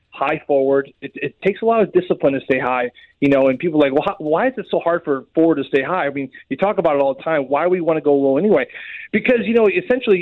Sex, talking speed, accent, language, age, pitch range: male, 295 wpm, American, English, 30-49, 135-170 Hz